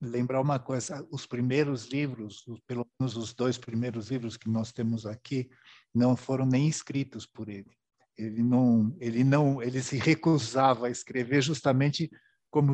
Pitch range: 120-145 Hz